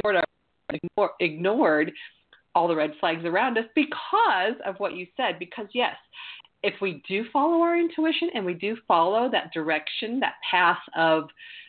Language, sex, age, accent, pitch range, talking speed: English, female, 40-59, American, 175-270 Hz, 150 wpm